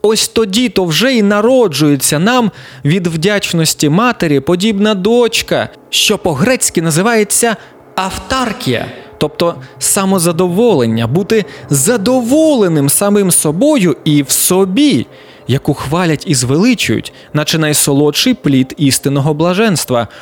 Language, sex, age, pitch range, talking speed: Ukrainian, male, 20-39, 145-220 Hz, 100 wpm